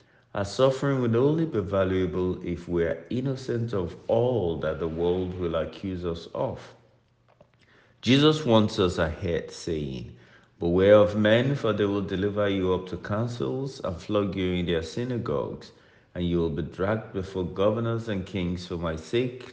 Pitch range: 90-115 Hz